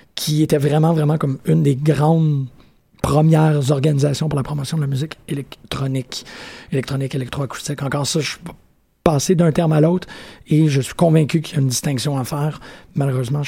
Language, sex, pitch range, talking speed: French, male, 140-160 Hz, 180 wpm